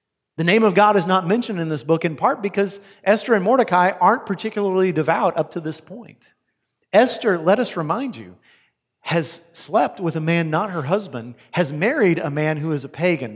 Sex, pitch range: male, 140-185 Hz